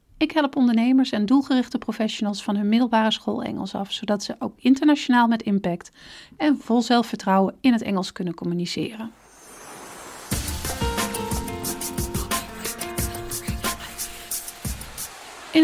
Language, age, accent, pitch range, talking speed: Dutch, 40-59, Dutch, 205-255 Hz, 105 wpm